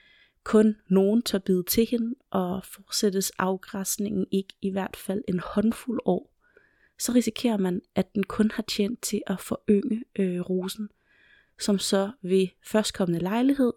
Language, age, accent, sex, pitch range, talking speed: Danish, 30-49, native, female, 190-215 Hz, 150 wpm